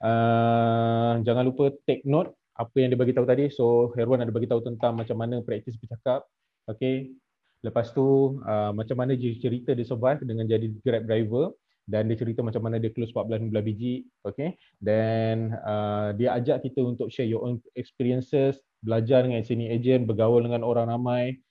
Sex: male